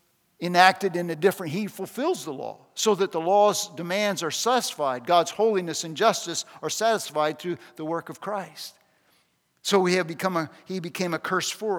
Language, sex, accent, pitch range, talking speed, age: English, male, American, 165-230 Hz, 185 wpm, 50-69